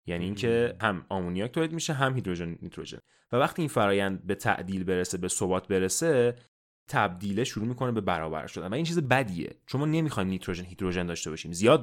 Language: Persian